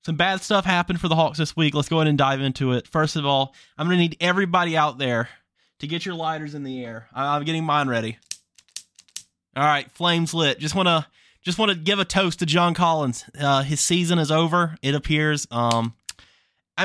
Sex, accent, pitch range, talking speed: male, American, 125-165 Hz, 210 wpm